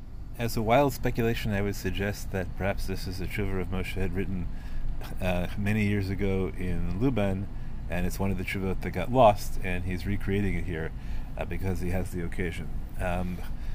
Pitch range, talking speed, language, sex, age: 95-115 Hz, 190 wpm, English, male, 30-49